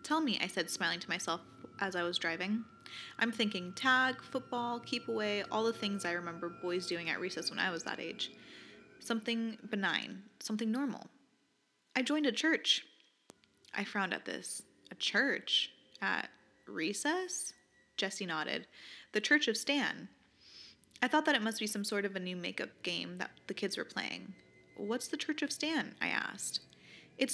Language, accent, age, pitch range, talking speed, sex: English, American, 20-39, 180-255 Hz, 175 wpm, female